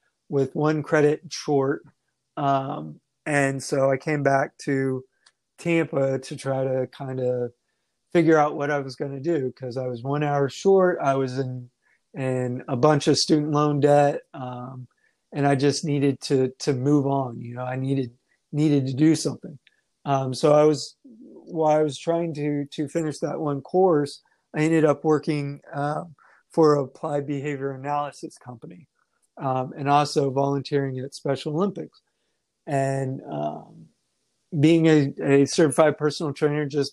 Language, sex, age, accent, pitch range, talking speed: English, male, 30-49, American, 135-155 Hz, 160 wpm